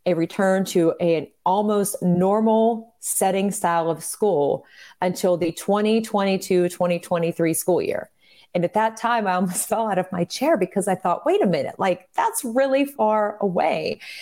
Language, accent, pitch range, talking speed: English, American, 170-210 Hz, 150 wpm